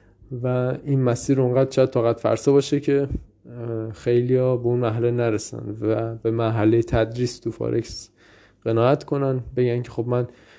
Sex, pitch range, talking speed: male, 110-130 Hz, 145 wpm